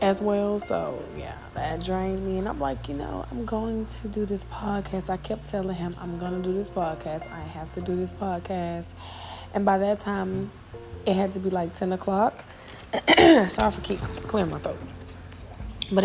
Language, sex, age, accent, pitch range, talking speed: English, female, 20-39, American, 155-205 Hz, 195 wpm